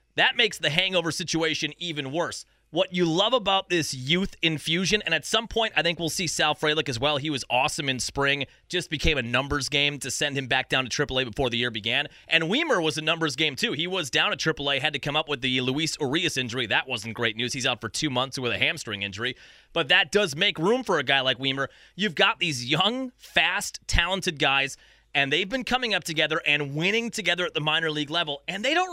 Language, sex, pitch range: English, male, 135-175 Hz